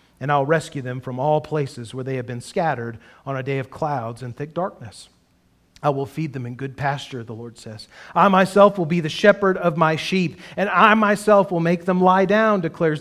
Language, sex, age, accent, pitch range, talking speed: English, male, 40-59, American, 130-170 Hz, 220 wpm